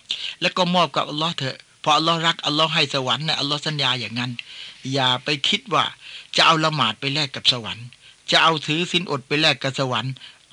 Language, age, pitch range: Thai, 60-79, 130-160 Hz